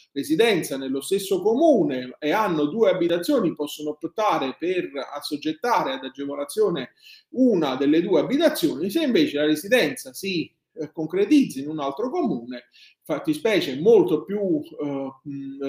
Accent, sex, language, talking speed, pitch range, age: native, male, Italian, 130 wpm, 150-235 Hz, 30-49